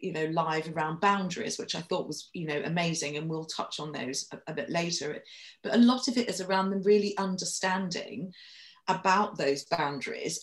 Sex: female